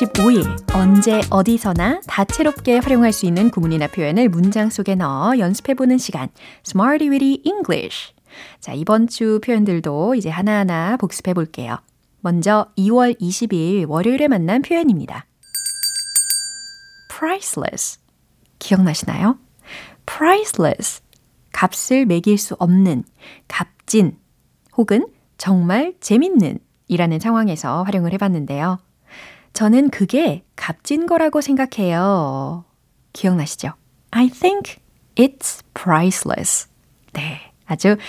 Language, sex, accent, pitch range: Korean, female, native, 180-270 Hz